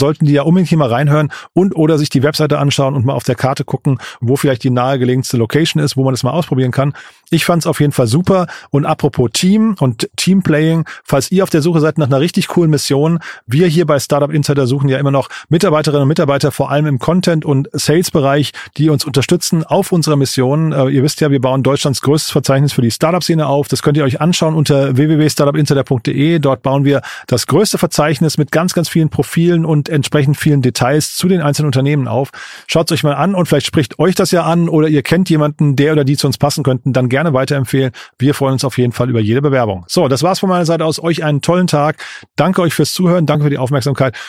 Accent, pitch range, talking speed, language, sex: German, 135-165 Hz, 230 wpm, German, male